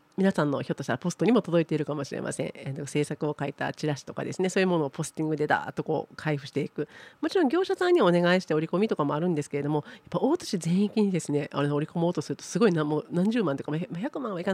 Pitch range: 145-200 Hz